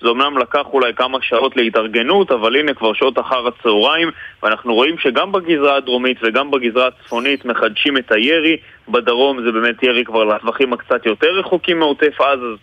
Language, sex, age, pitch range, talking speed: Hebrew, male, 20-39, 120-140 Hz, 170 wpm